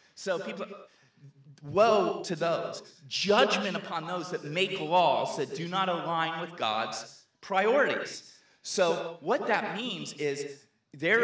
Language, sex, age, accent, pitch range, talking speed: English, male, 30-49, American, 135-190 Hz, 130 wpm